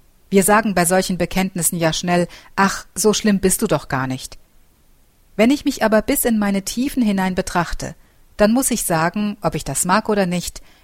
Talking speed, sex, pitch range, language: 195 wpm, female, 155-210 Hz, German